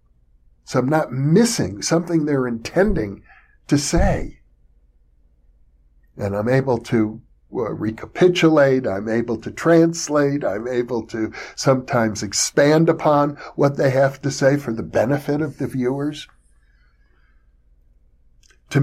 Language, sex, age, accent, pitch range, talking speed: English, male, 60-79, American, 110-155 Hz, 120 wpm